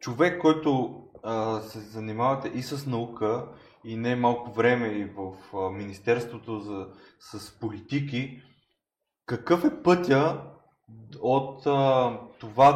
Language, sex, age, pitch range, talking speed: Bulgarian, male, 20-39, 115-140 Hz, 120 wpm